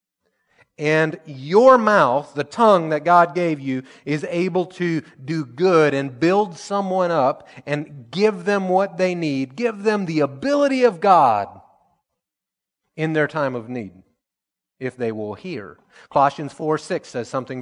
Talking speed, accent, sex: 150 wpm, American, male